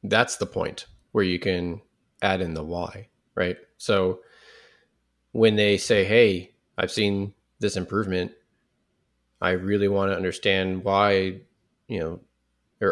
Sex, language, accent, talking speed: male, English, American, 130 wpm